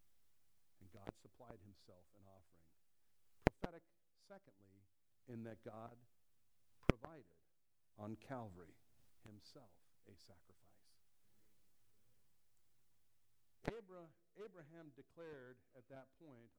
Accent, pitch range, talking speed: American, 105-130 Hz, 80 wpm